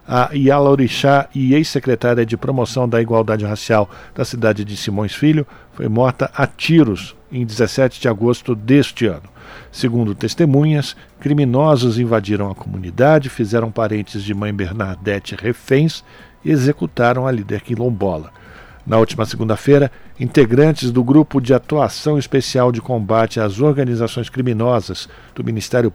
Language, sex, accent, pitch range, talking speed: Portuguese, male, Brazilian, 110-140 Hz, 130 wpm